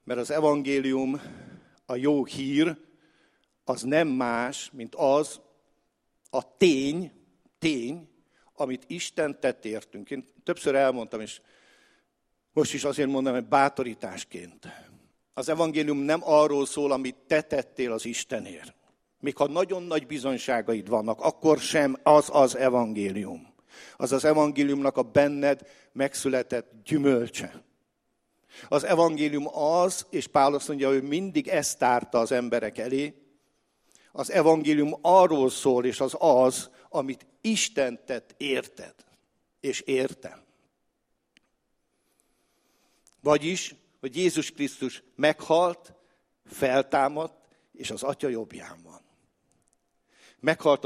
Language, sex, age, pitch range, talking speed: English, male, 50-69, 130-155 Hz, 110 wpm